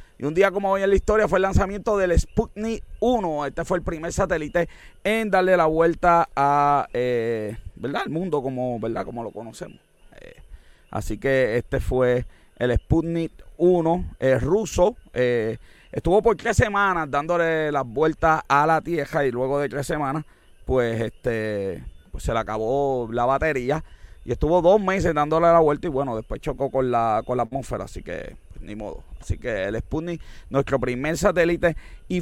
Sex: male